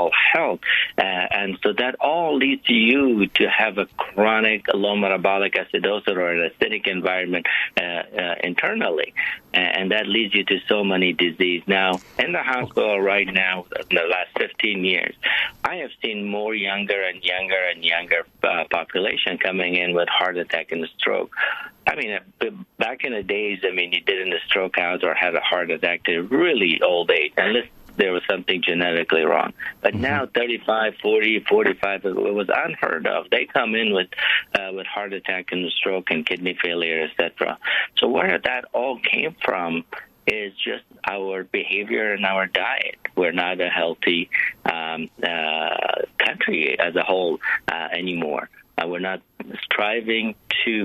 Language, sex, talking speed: English, male, 170 wpm